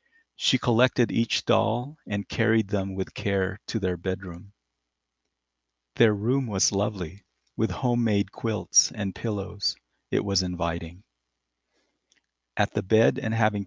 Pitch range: 95-110 Hz